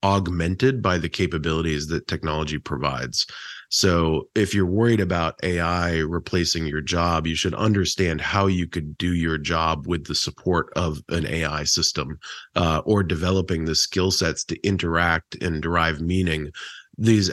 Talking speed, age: 150 wpm, 30-49